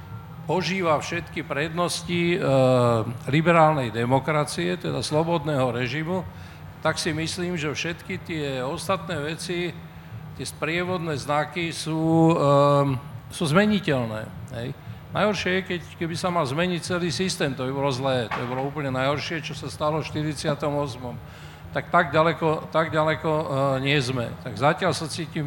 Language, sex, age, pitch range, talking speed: Slovak, male, 50-69, 140-165 Hz, 130 wpm